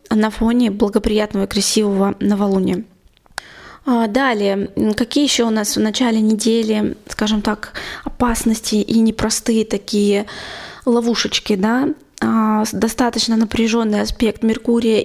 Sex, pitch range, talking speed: female, 210-240 Hz, 105 wpm